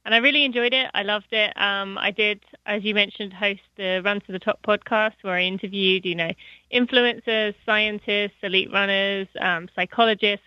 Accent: British